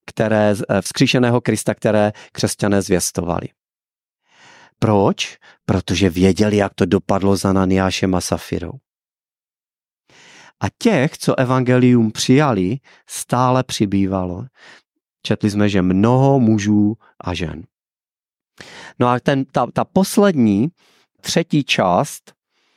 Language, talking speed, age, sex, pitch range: Czech, 100 wpm, 40-59, male, 105-130 Hz